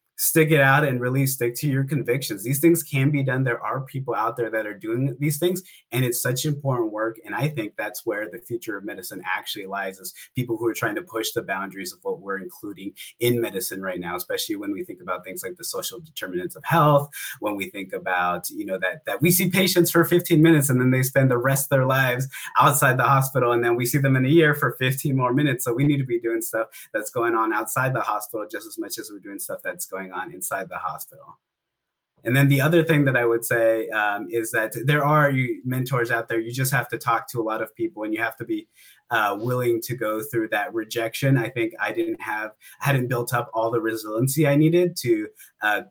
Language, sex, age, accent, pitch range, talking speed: English, male, 30-49, American, 120-155 Hz, 245 wpm